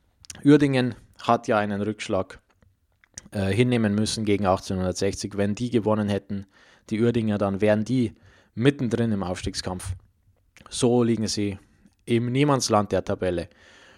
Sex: male